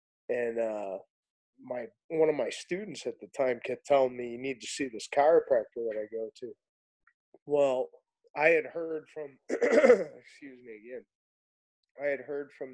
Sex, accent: male, American